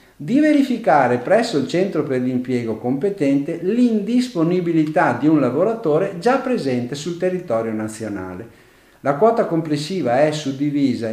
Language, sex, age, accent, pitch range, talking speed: Italian, male, 50-69, native, 120-185 Hz, 120 wpm